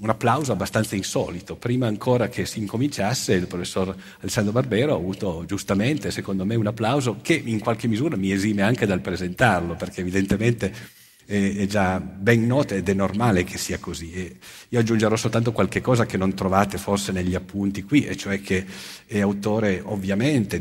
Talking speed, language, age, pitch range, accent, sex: 170 wpm, Italian, 50-69, 90-110 Hz, native, male